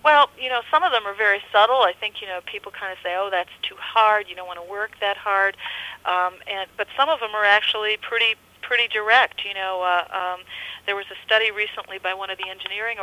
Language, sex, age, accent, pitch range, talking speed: English, female, 40-59, American, 185-225 Hz, 245 wpm